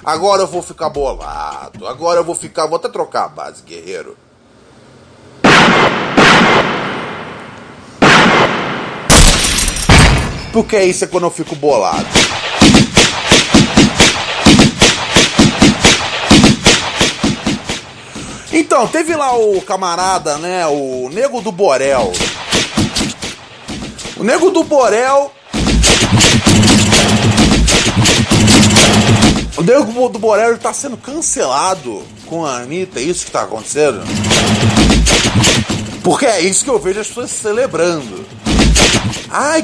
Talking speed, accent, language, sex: 90 wpm, Brazilian, Portuguese, male